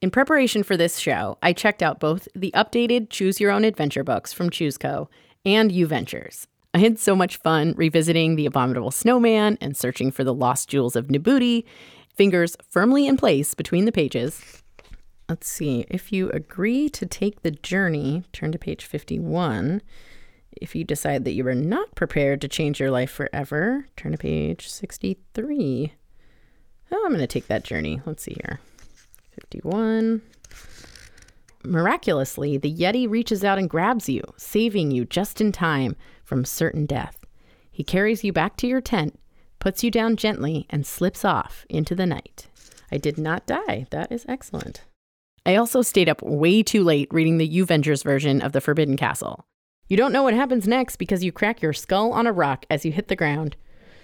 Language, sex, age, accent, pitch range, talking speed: English, female, 30-49, American, 145-215 Hz, 180 wpm